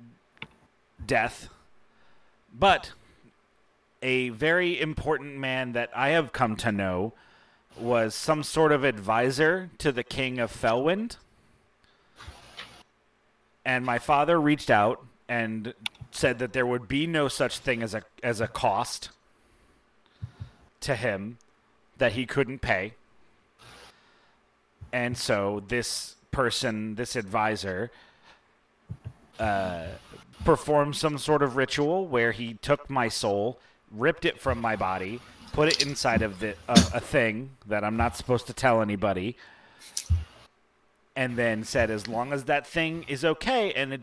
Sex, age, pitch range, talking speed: male, 30-49, 115-145 Hz, 130 wpm